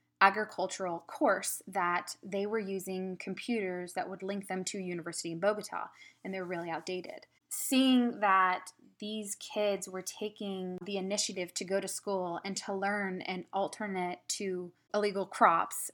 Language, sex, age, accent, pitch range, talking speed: English, female, 20-39, American, 185-210 Hz, 150 wpm